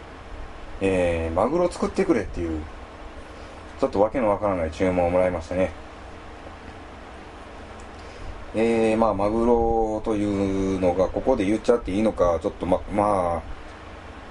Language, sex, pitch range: Japanese, male, 80-100 Hz